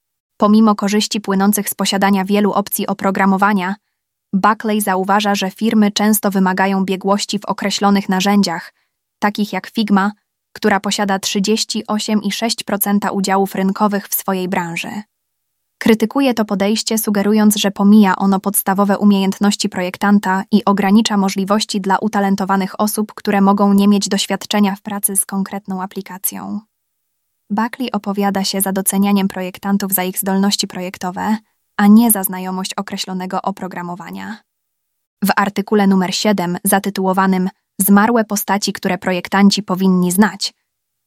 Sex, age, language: female, 20-39, Polish